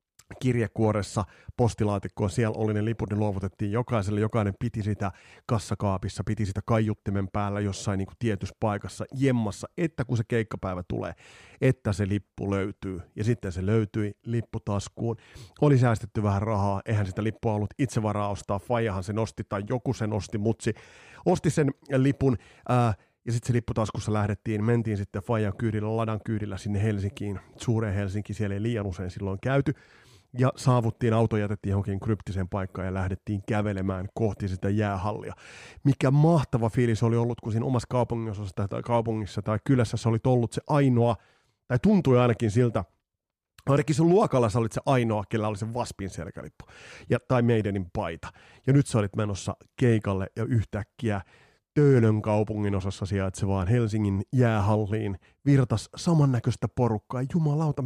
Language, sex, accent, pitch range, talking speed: Finnish, male, native, 100-120 Hz, 150 wpm